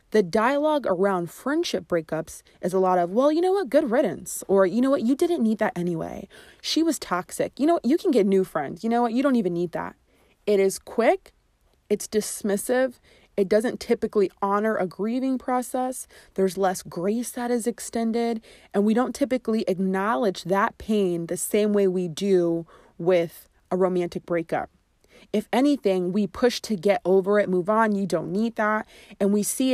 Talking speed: 190 wpm